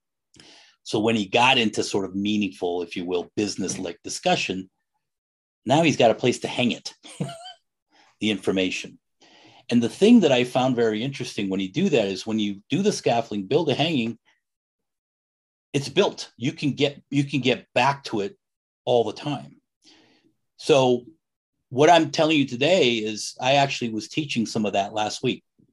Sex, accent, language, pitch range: male, American, English, 110-150 Hz